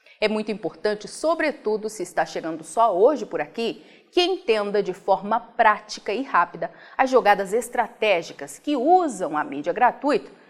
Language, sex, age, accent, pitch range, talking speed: Portuguese, female, 30-49, Brazilian, 190-285 Hz, 150 wpm